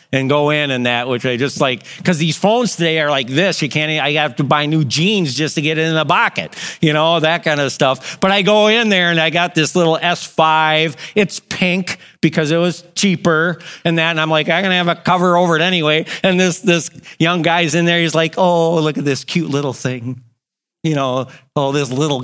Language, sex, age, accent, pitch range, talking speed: English, male, 50-69, American, 150-195 Hz, 240 wpm